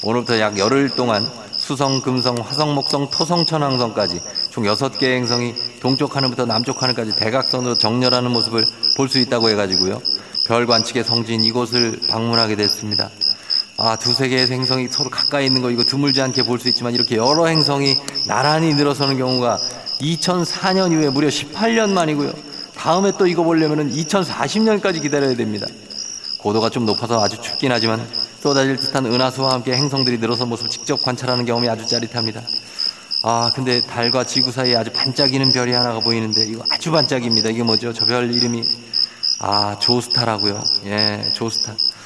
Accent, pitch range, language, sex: native, 110-135 Hz, Korean, male